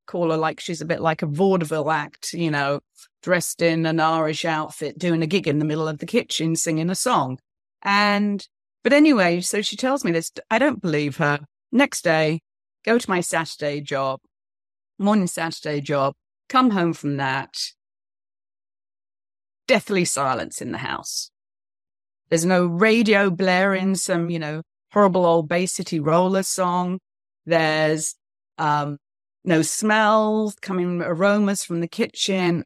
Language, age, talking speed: English, 40-59, 150 wpm